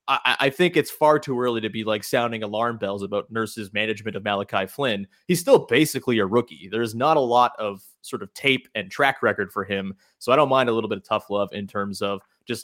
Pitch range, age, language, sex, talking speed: 110-150 Hz, 30-49, English, male, 240 wpm